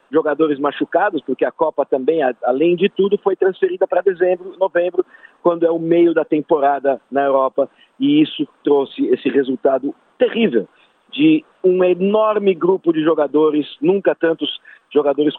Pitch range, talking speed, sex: 145-200 Hz, 145 wpm, male